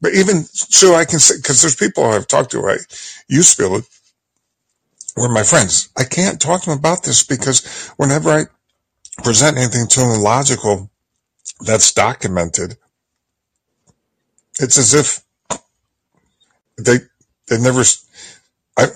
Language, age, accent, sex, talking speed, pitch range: English, 50-69, American, male, 135 wpm, 110-160 Hz